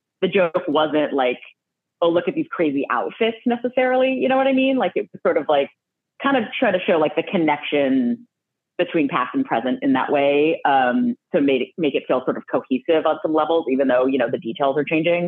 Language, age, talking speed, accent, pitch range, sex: English, 30-49, 220 wpm, American, 140-205 Hz, female